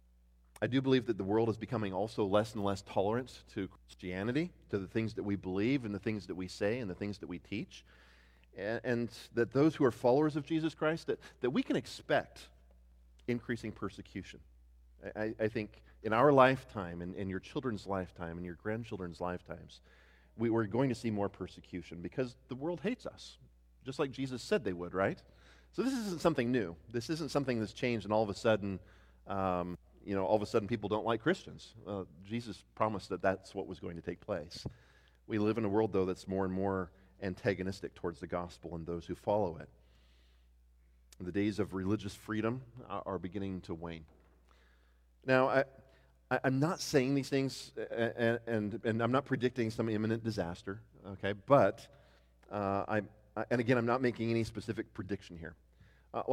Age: 40-59